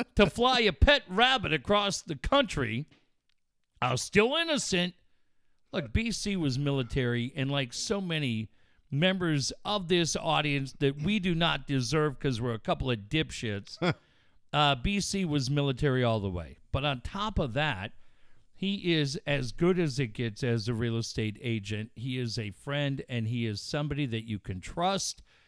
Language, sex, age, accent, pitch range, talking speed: English, male, 50-69, American, 115-160 Hz, 165 wpm